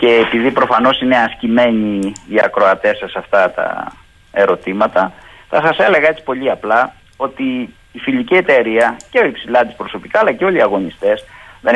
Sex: male